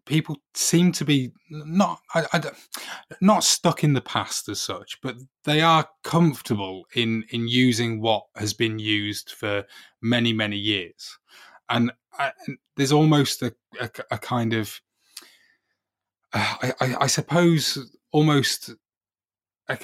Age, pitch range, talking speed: 20-39, 105-135 Hz, 135 wpm